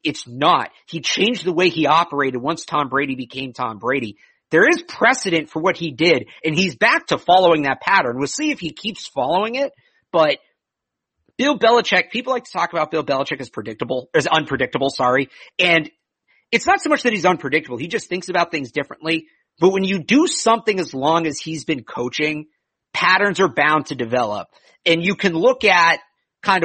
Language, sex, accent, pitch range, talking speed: English, male, American, 150-200 Hz, 195 wpm